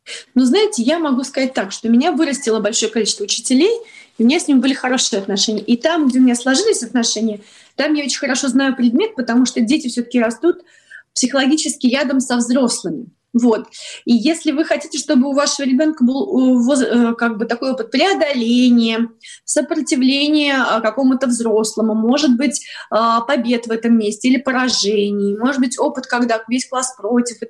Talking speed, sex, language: 170 wpm, female, Russian